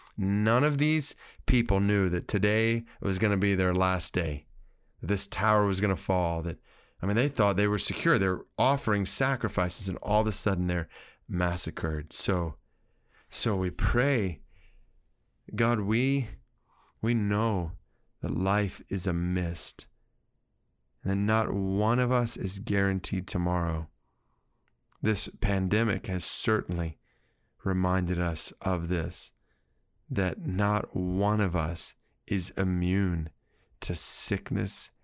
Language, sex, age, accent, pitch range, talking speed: English, male, 30-49, American, 90-115 Hz, 130 wpm